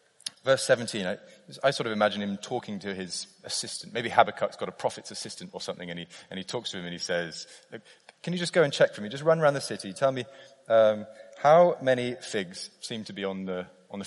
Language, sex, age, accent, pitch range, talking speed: English, male, 30-49, British, 95-135 Hz, 240 wpm